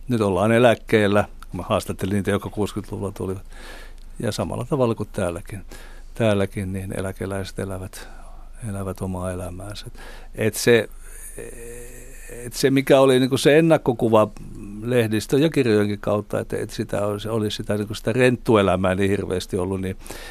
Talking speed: 140 wpm